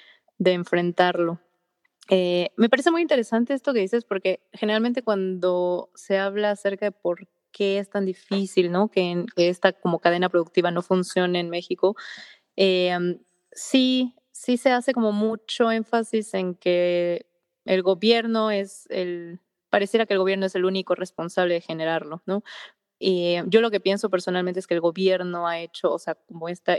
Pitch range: 180-215 Hz